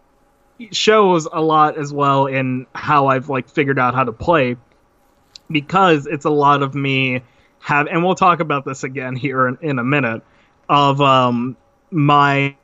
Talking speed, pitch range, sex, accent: 165 wpm, 135-165 Hz, male, American